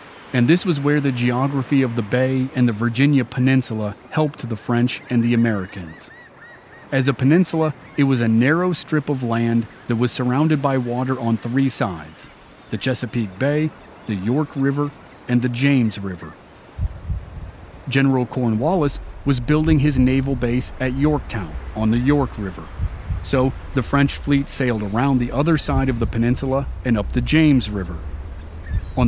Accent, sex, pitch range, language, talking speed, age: American, male, 100-135 Hz, English, 160 wpm, 40-59